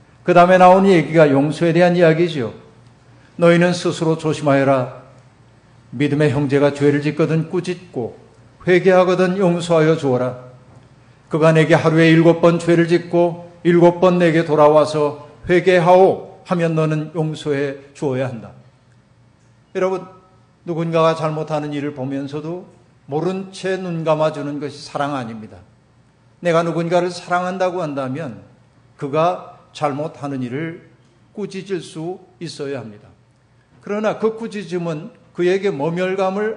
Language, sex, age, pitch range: Korean, male, 50-69, 130-175 Hz